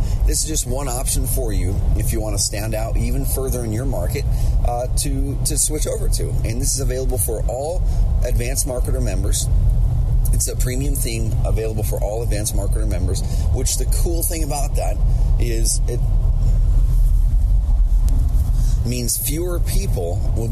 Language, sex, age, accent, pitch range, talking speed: English, male, 30-49, American, 95-115 Hz, 160 wpm